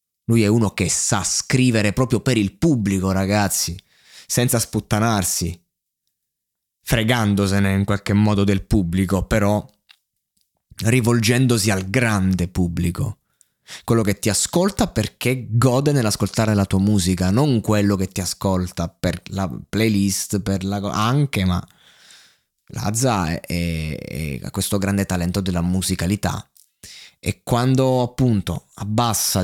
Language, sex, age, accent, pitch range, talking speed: Italian, male, 20-39, native, 95-125 Hz, 120 wpm